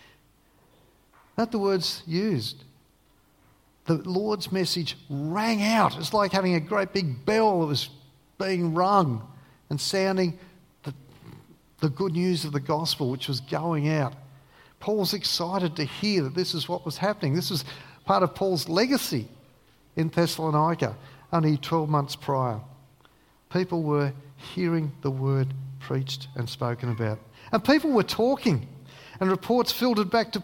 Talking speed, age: 145 wpm, 50-69